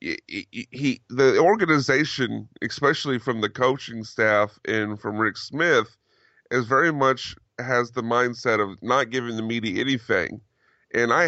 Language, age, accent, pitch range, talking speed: English, 30-49, American, 115-135 Hz, 150 wpm